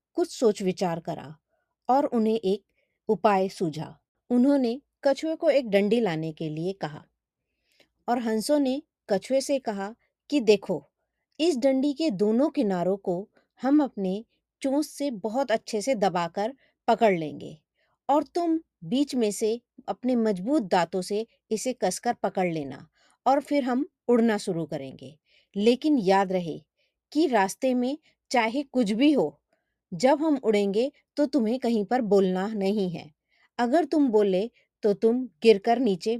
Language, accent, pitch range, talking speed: Hindi, native, 195-270 Hz, 145 wpm